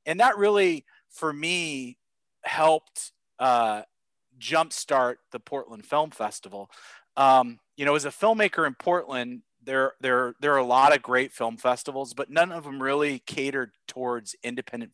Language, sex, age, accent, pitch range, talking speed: English, male, 30-49, American, 125-155 Hz, 155 wpm